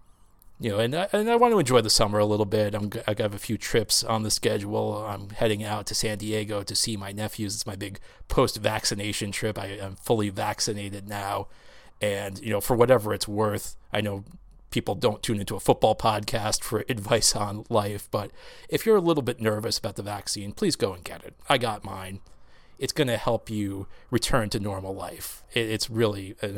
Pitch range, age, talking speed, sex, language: 100-115 Hz, 30-49, 210 wpm, male, English